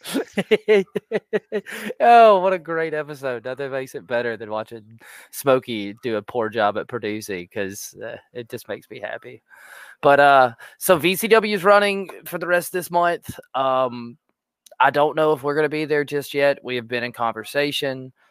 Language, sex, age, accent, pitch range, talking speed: English, male, 20-39, American, 115-140 Hz, 175 wpm